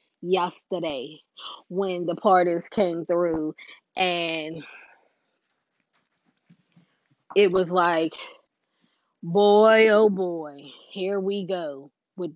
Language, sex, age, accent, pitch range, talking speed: English, female, 20-39, American, 180-250 Hz, 85 wpm